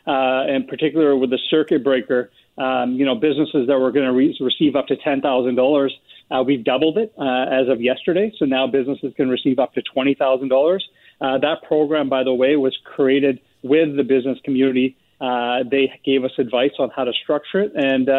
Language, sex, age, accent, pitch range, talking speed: English, male, 40-59, American, 130-150 Hz, 195 wpm